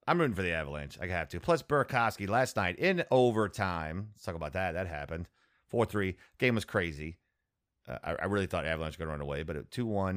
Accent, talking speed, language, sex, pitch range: American, 225 wpm, English, male, 80-115 Hz